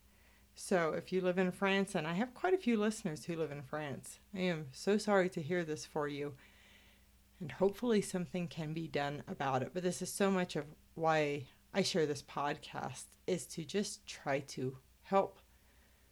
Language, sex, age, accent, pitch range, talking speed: English, female, 40-59, American, 140-190 Hz, 190 wpm